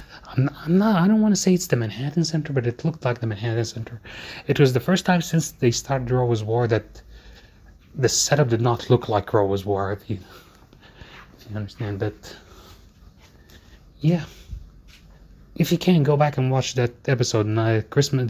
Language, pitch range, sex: English, 100-130 Hz, male